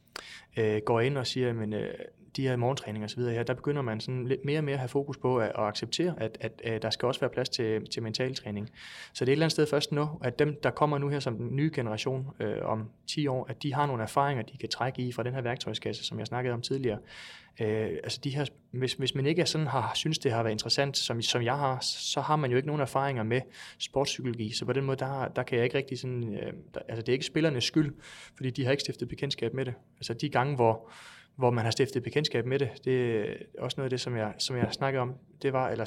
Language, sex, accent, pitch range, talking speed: Danish, male, native, 115-140 Hz, 270 wpm